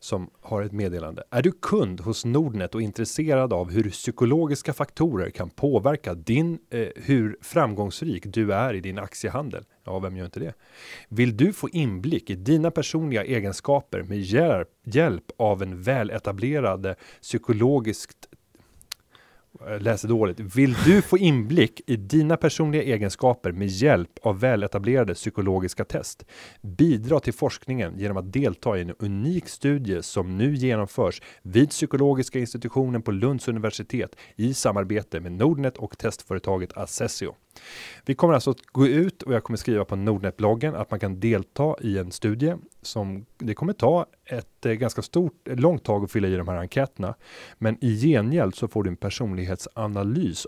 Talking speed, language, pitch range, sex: 155 wpm, Swedish, 100-140 Hz, male